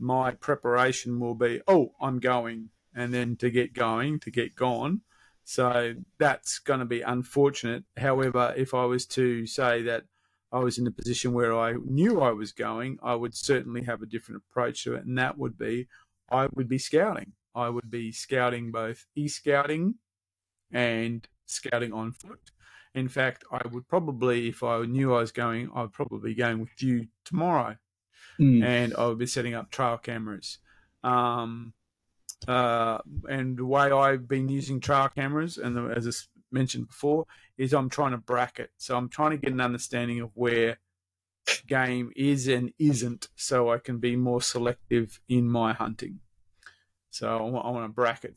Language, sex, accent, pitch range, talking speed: English, male, Australian, 115-130 Hz, 175 wpm